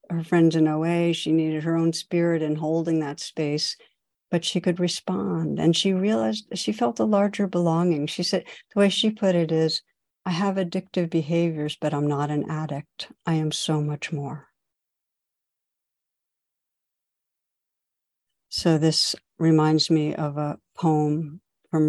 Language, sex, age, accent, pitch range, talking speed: English, female, 60-79, American, 155-175 Hz, 150 wpm